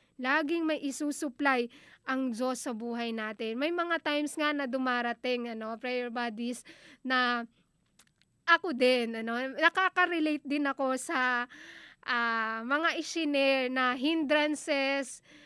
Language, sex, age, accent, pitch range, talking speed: Filipino, female, 20-39, native, 250-295 Hz, 115 wpm